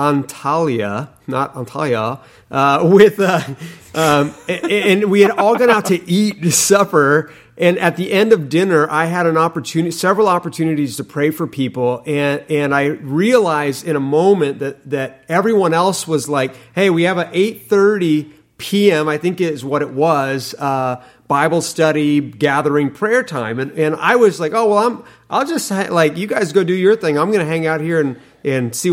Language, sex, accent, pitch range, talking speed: English, male, American, 145-185 Hz, 190 wpm